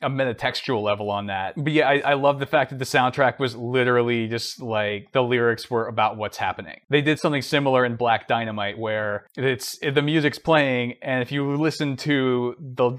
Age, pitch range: 20-39, 115-145 Hz